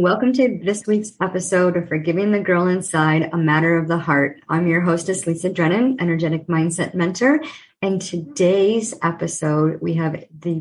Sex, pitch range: male, 160-190 Hz